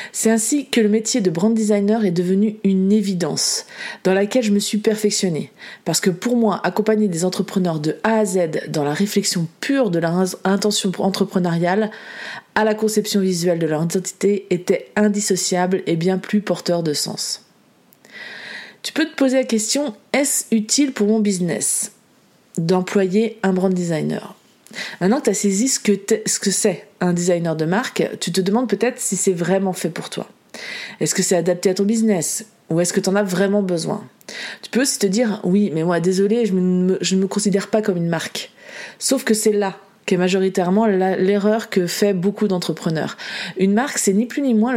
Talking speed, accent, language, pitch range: 195 wpm, French, French, 185-220 Hz